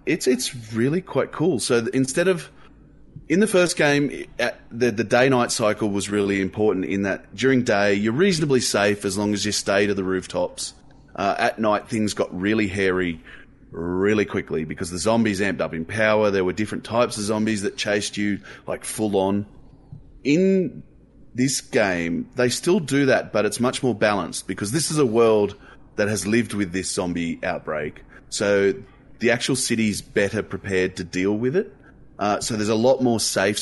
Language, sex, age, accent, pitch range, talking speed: English, male, 30-49, Australian, 95-125 Hz, 185 wpm